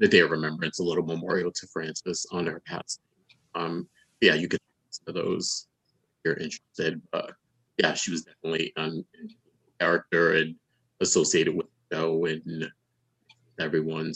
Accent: American